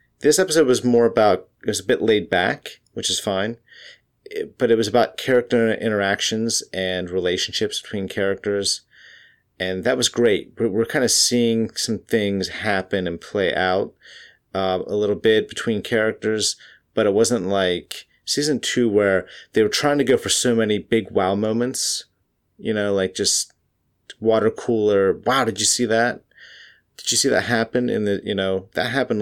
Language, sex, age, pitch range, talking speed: English, male, 30-49, 95-110 Hz, 175 wpm